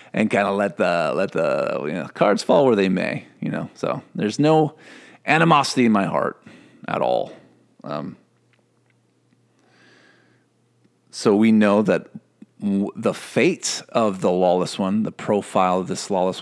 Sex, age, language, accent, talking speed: male, 40-59, English, American, 155 wpm